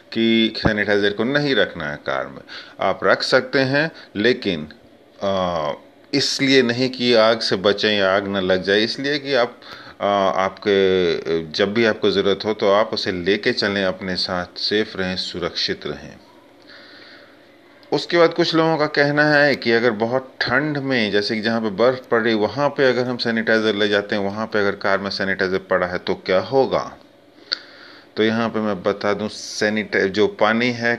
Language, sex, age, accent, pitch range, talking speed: Hindi, male, 30-49, native, 95-115 Hz, 175 wpm